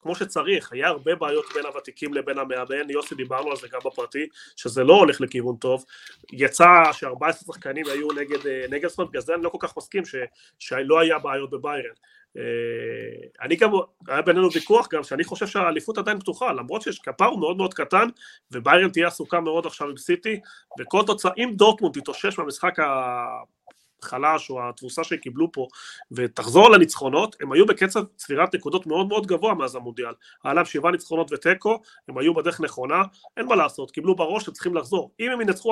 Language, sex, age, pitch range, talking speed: Hebrew, male, 30-49, 140-225 Hz, 175 wpm